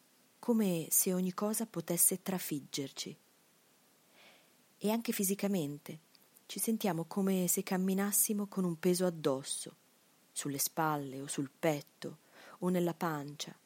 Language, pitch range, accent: Italian, 155-205 Hz, native